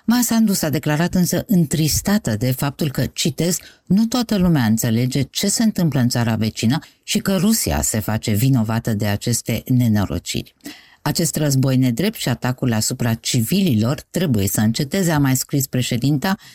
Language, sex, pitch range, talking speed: Romanian, female, 115-160 Hz, 150 wpm